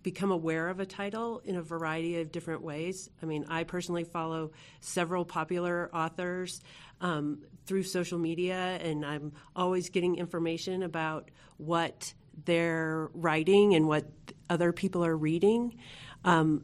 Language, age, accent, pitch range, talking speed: English, 40-59, American, 155-185 Hz, 140 wpm